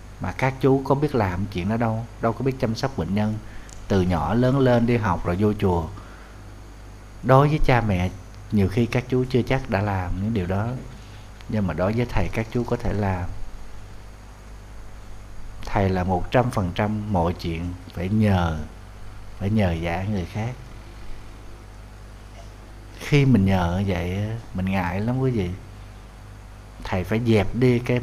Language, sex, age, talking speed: Vietnamese, male, 60-79, 170 wpm